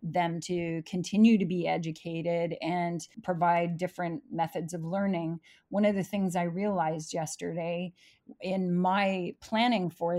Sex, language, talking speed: female, English, 135 wpm